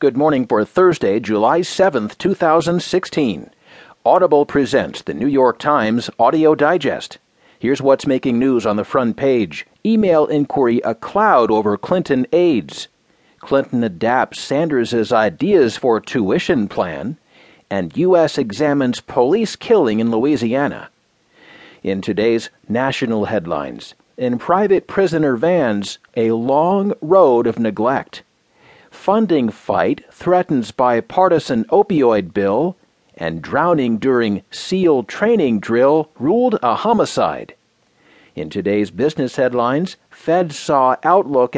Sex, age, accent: male, 50-69, American